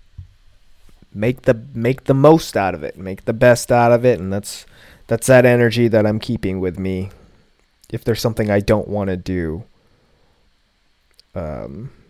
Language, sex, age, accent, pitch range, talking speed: English, male, 20-39, American, 95-125 Hz, 165 wpm